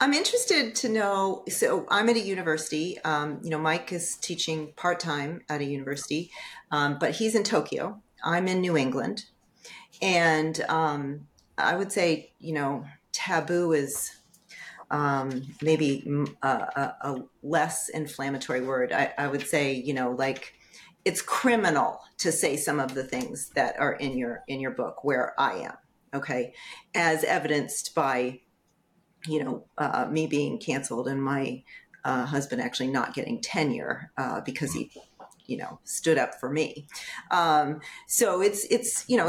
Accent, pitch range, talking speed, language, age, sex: American, 145-220 Hz, 155 wpm, English, 40-59, female